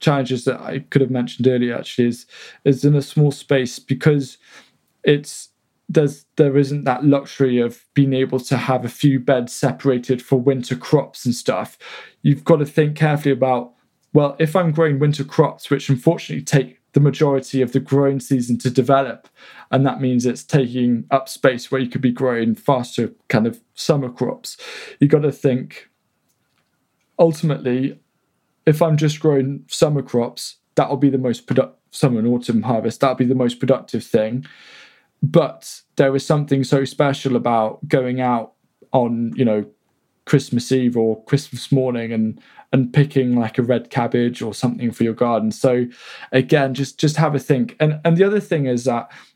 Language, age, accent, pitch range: English, 20-39, British, 125-145 Hz